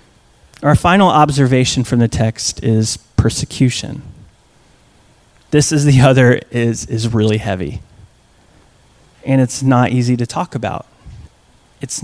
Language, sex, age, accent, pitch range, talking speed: English, male, 30-49, American, 120-140 Hz, 120 wpm